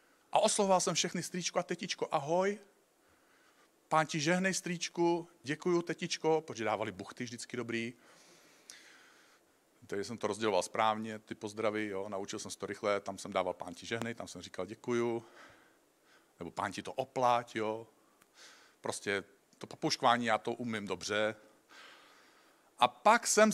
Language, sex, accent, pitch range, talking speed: Czech, male, native, 110-165 Hz, 145 wpm